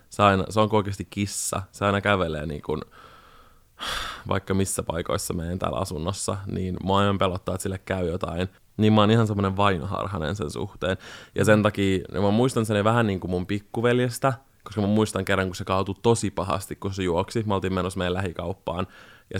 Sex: male